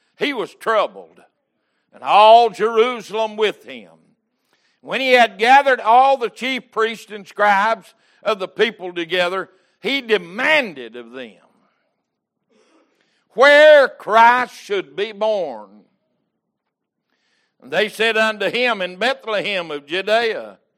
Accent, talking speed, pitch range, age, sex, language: American, 115 wpm, 190-245 Hz, 60-79, male, English